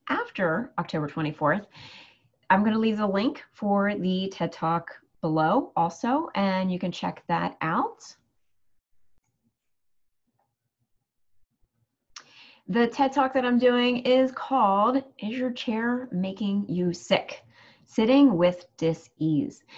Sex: female